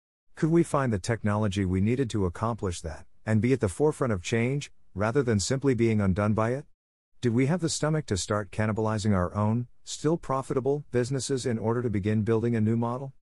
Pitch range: 90-120 Hz